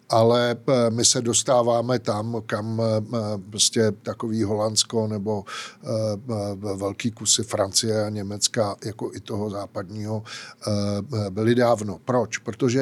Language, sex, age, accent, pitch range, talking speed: Czech, male, 50-69, native, 110-135 Hz, 110 wpm